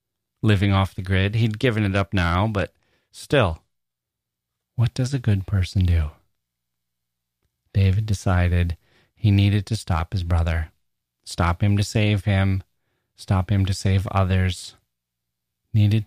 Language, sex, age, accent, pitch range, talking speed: English, male, 30-49, American, 95-115 Hz, 135 wpm